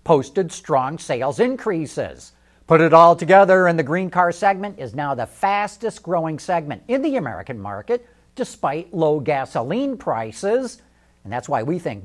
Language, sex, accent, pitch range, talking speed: English, male, American, 140-210 Hz, 160 wpm